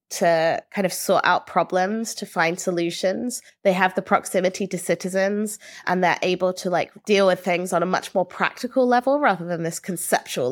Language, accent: English, British